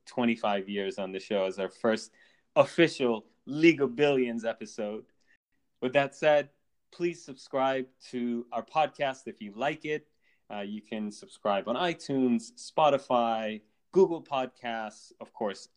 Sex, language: male, English